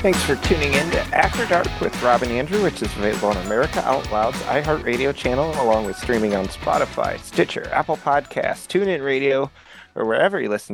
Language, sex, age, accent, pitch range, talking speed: English, male, 30-49, American, 105-140 Hz, 185 wpm